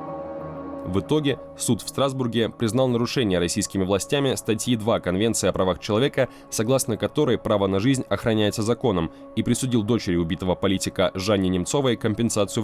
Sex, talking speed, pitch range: male, 140 wpm, 95-120 Hz